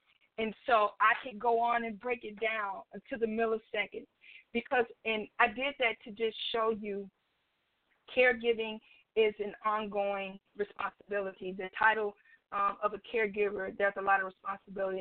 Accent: American